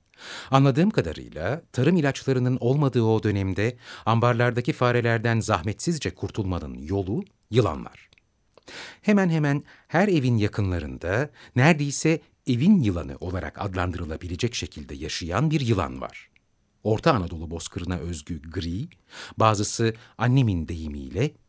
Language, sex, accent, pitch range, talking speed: Turkish, male, native, 90-135 Hz, 100 wpm